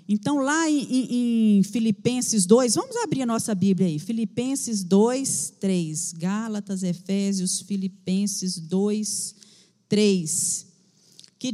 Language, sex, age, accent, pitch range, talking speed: Portuguese, female, 40-59, Brazilian, 195-300 Hz, 115 wpm